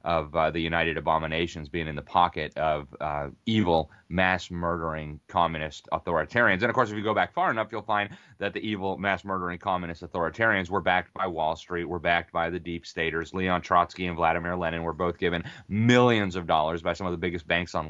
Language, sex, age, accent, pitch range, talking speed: English, male, 30-49, American, 85-105 Hz, 205 wpm